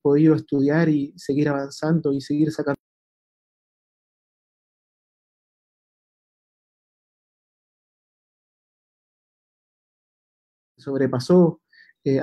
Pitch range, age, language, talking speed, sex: 135-160 Hz, 30-49, Spanish, 50 wpm, male